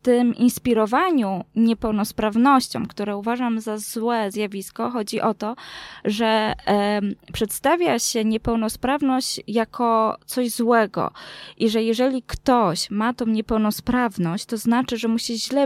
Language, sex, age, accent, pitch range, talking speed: Polish, female, 20-39, native, 210-245 Hz, 125 wpm